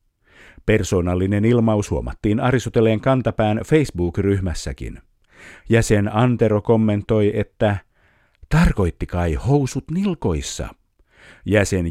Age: 50-69